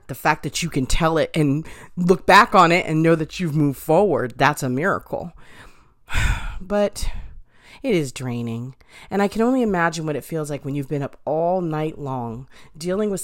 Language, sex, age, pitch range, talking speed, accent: English, female, 40-59, 145-210 Hz, 195 wpm, American